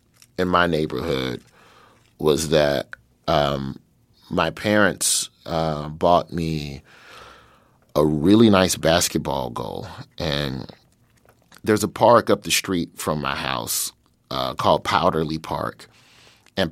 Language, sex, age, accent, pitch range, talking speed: English, male, 30-49, American, 80-105 Hz, 110 wpm